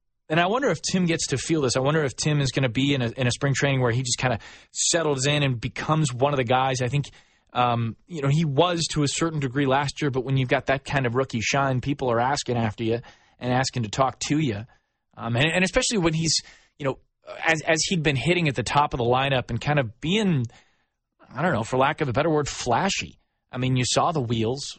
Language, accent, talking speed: English, American, 260 wpm